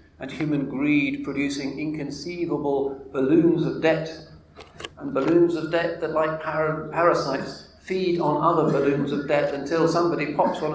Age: 50-69